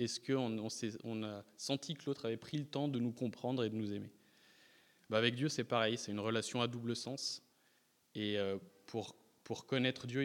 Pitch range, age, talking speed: 110-135 Hz, 20-39, 185 wpm